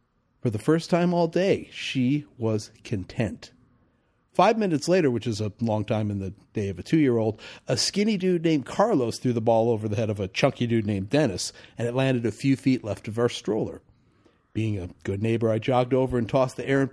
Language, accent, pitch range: English, American, 115-170 Hz